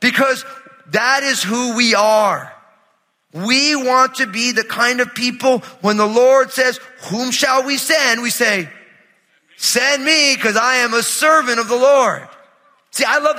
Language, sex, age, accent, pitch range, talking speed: English, male, 30-49, American, 180-255 Hz, 165 wpm